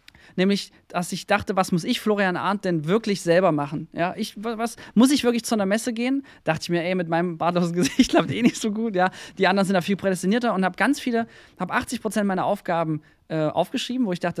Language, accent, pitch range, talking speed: German, German, 170-230 Hz, 240 wpm